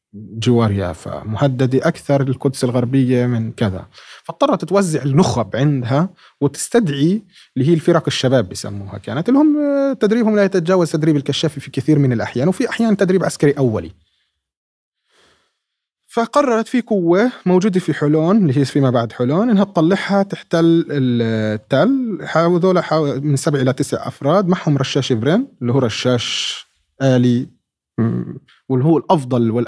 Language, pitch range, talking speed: Arabic, 120-175 Hz, 130 wpm